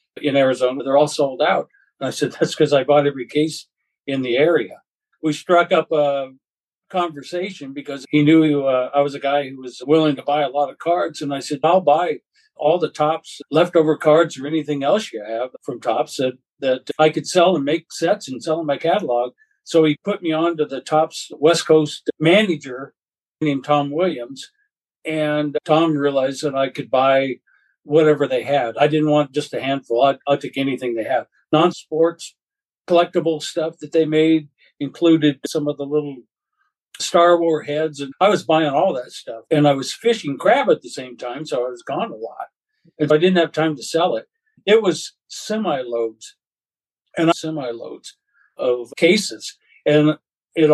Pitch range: 140-170 Hz